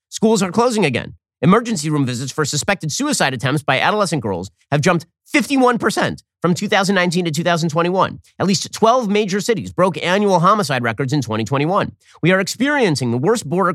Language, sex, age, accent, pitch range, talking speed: English, male, 40-59, American, 125-190 Hz, 165 wpm